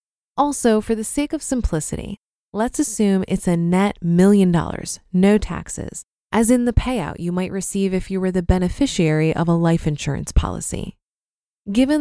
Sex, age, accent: female, 20-39, American